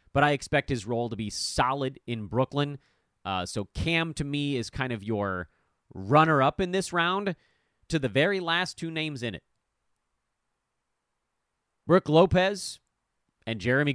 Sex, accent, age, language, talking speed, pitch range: male, American, 30-49, English, 150 wpm, 105-160 Hz